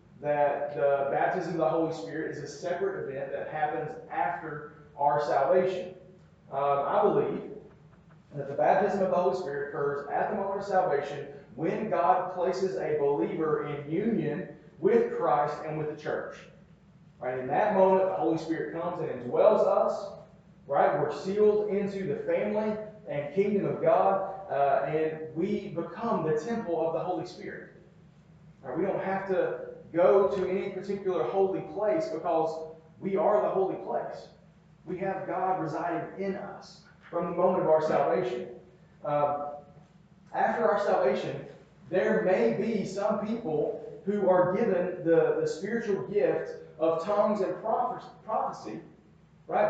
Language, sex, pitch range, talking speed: English, male, 155-195 Hz, 150 wpm